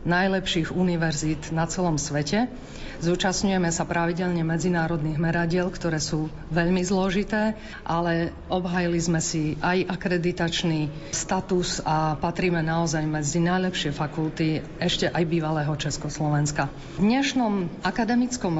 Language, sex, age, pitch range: Slovak, female, 40-59, 165-190 Hz